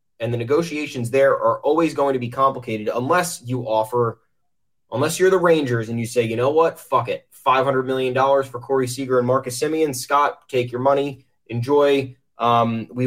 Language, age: English, 20-39